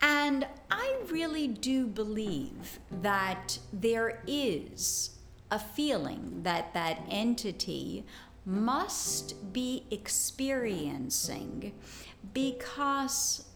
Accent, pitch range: American, 180-255 Hz